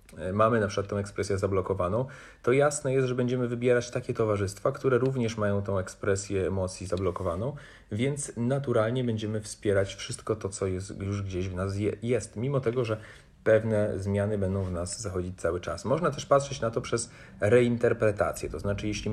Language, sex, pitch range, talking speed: Polish, male, 100-125 Hz, 175 wpm